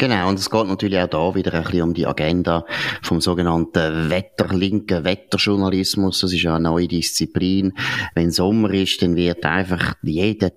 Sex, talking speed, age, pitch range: male, 170 wpm, 30-49, 90-115 Hz